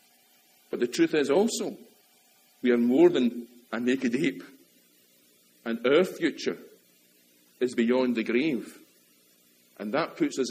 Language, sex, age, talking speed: English, male, 50-69, 130 wpm